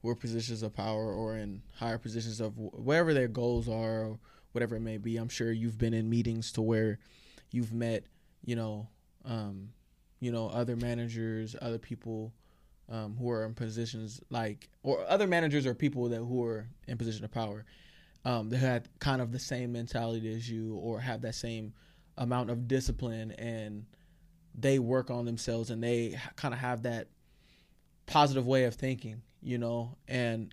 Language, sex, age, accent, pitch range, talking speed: English, male, 20-39, American, 115-130 Hz, 185 wpm